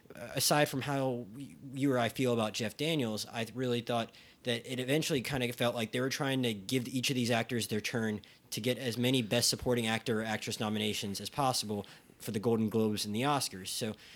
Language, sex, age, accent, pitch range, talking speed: English, male, 20-39, American, 110-130 Hz, 215 wpm